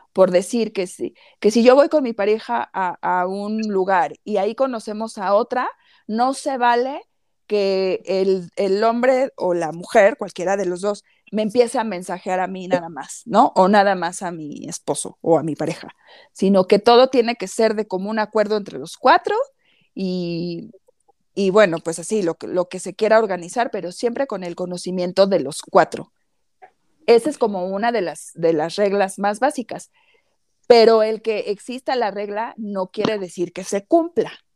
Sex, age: female, 40-59